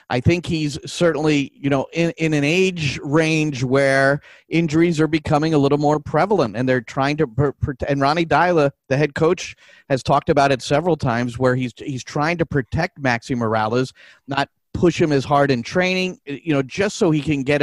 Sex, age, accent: male, 40-59, American